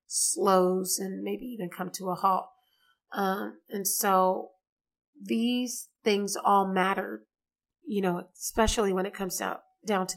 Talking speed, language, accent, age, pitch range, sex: 140 wpm, English, American, 30-49, 185-220 Hz, female